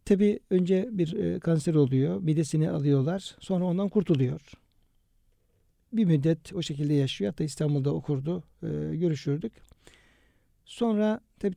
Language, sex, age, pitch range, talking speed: Turkish, male, 60-79, 145-180 Hz, 110 wpm